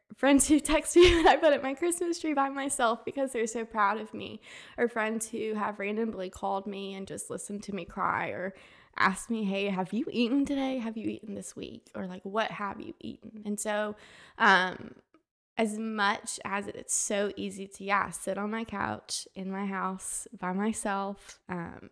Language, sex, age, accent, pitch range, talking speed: English, female, 20-39, American, 190-225 Hz, 195 wpm